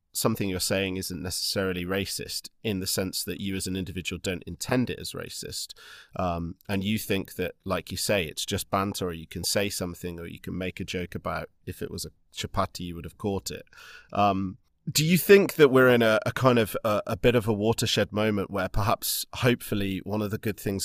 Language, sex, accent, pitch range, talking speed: English, male, British, 90-105 Hz, 225 wpm